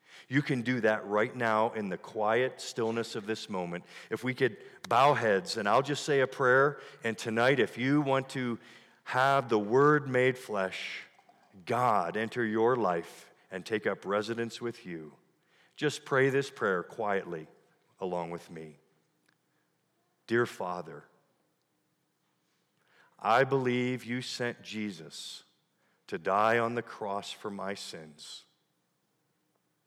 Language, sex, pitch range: English, male, 105-140 Hz